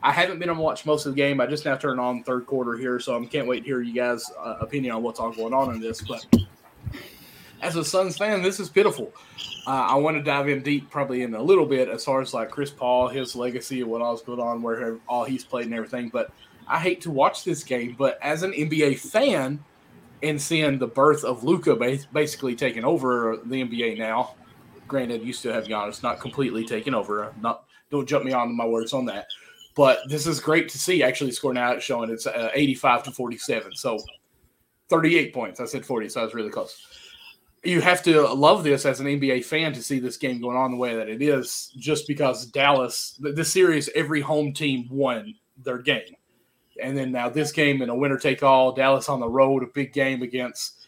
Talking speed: 225 wpm